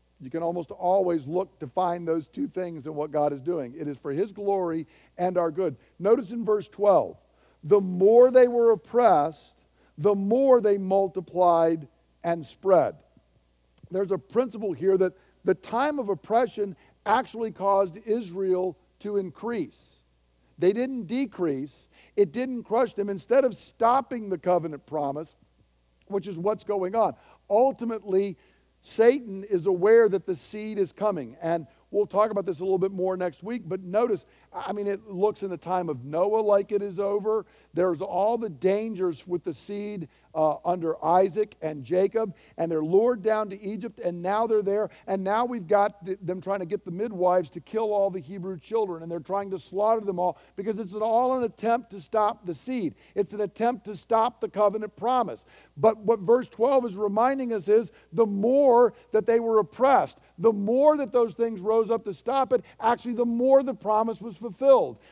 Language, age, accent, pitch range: English, 50-69, American, 180-230 Hz